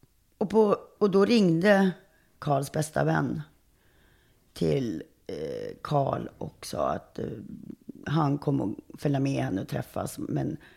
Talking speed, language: 125 wpm, Swedish